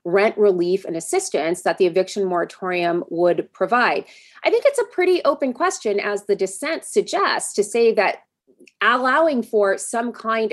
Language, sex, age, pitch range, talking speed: English, female, 30-49, 180-220 Hz, 160 wpm